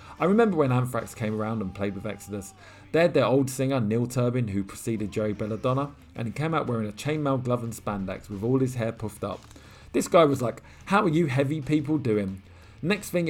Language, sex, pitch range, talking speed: English, male, 105-135 Hz, 220 wpm